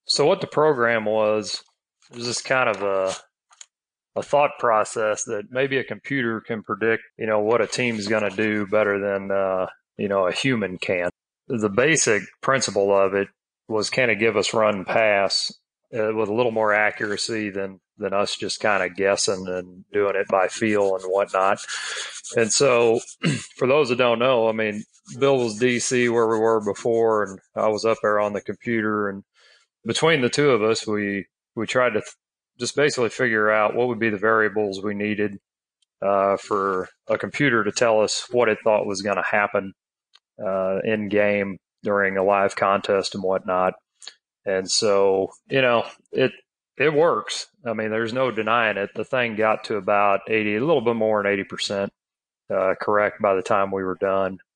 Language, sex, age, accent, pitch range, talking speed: English, male, 30-49, American, 100-115 Hz, 190 wpm